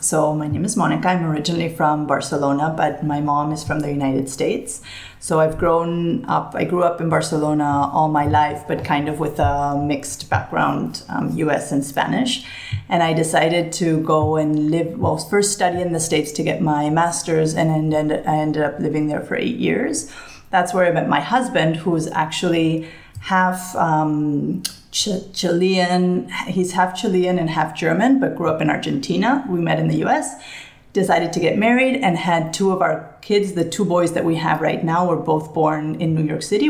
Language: English